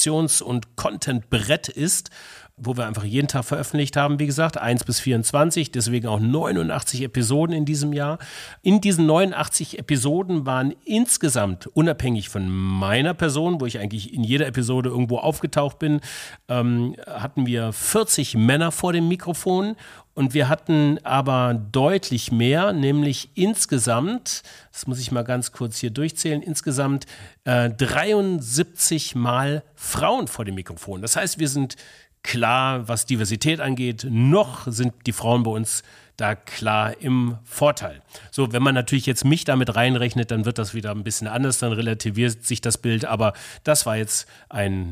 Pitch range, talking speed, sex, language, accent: 115-155 Hz, 155 wpm, male, German, German